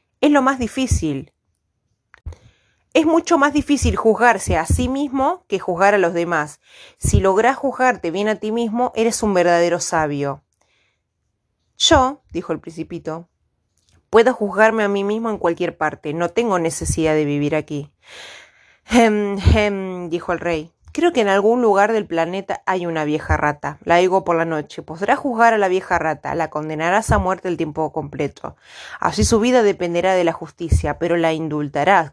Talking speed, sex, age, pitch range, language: 170 wpm, female, 20-39, 155-220 Hz, Spanish